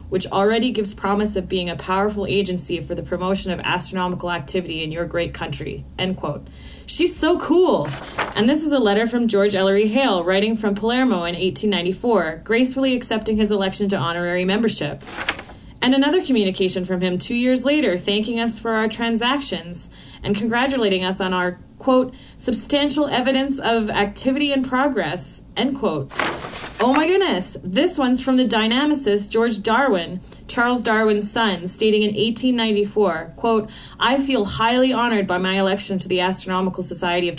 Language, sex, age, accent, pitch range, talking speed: English, female, 30-49, American, 185-235 Hz, 160 wpm